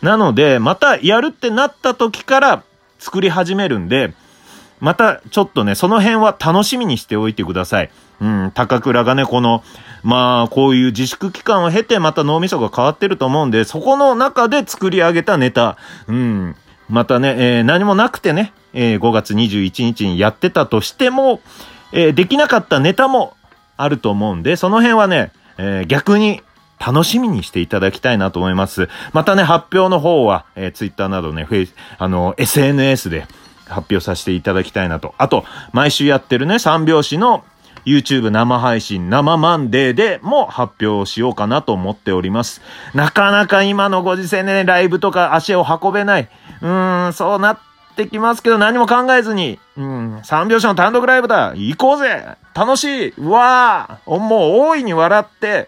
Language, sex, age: Japanese, male, 30-49